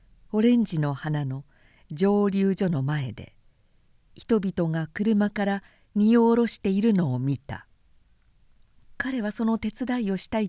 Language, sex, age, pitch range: Japanese, female, 50-69, 140-215 Hz